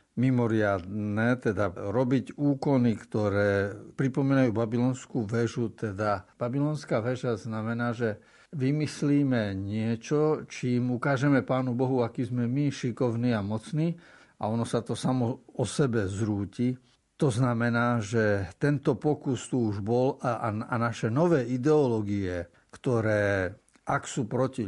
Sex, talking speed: male, 120 wpm